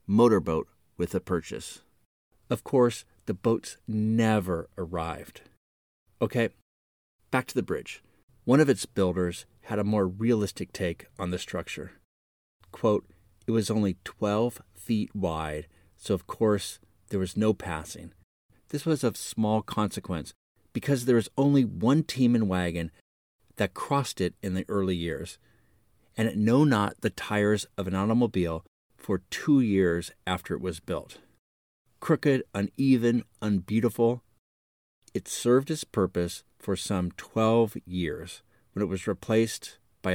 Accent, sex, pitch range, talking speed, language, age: American, male, 85-115 Hz, 140 wpm, English, 30-49